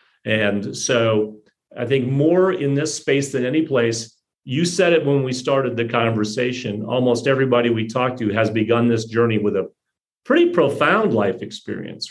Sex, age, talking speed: male, 40-59, 170 wpm